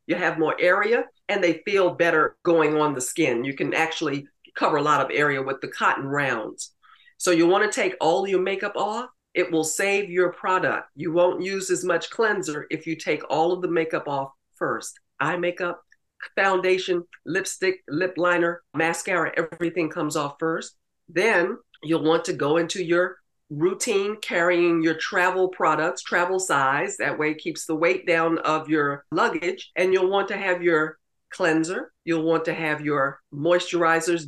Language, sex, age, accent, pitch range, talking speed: English, female, 50-69, American, 155-185 Hz, 175 wpm